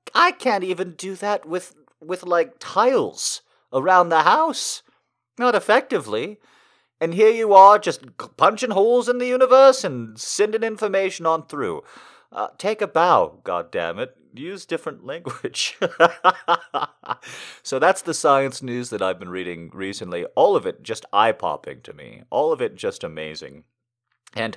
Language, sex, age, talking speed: English, male, 40-59, 150 wpm